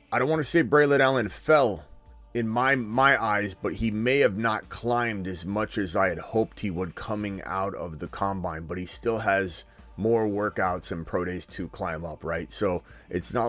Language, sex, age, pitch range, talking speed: English, male, 30-49, 95-125 Hz, 210 wpm